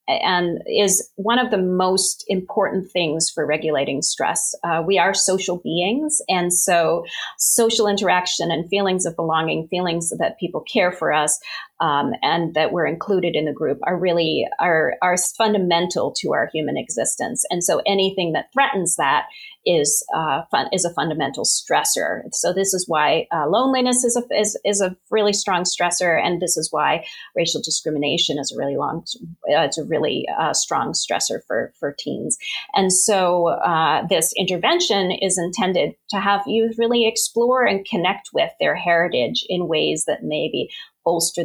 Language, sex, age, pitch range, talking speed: English, female, 40-59, 170-210 Hz, 170 wpm